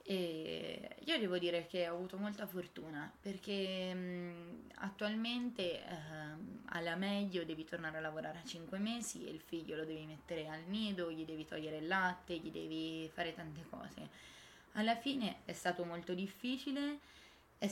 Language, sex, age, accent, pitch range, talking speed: Italian, female, 20-39, native, 165-195 Hz, 160 wpm